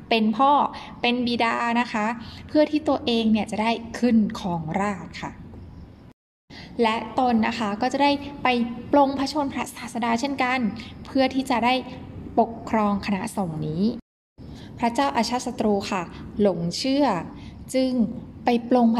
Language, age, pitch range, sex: Thai, 10-29, 200-240 Hz, female